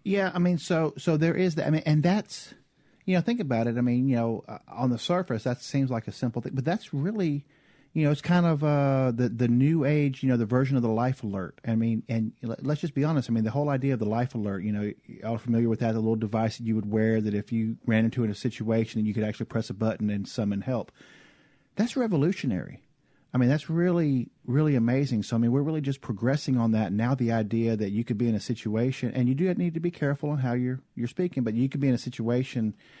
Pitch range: 110-140 Hz